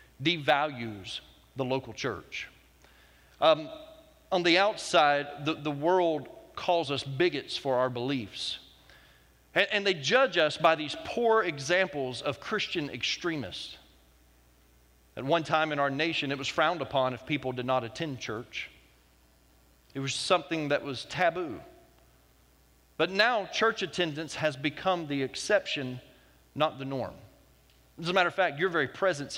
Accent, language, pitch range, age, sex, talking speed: American, English, 110-175 Hz, 40-59, male, 145 wpm